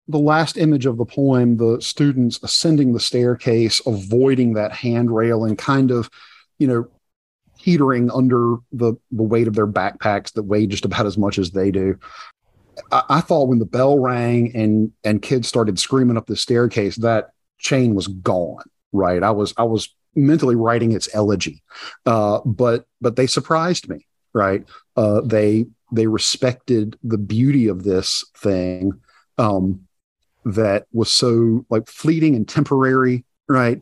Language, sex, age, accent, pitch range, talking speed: English, male, 50-69, American, 105-125 Hz, 160 wpm